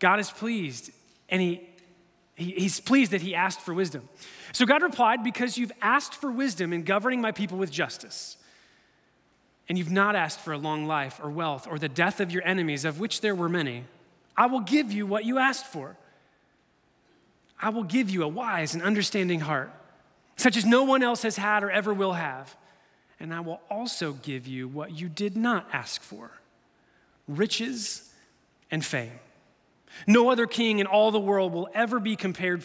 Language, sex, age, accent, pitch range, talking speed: English, male, 30-49, American, 160-210 Hz, 185 wpm